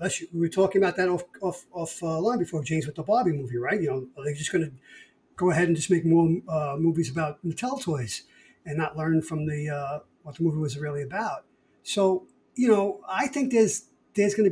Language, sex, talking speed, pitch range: English, male, 225 wpm, 155-195 Hz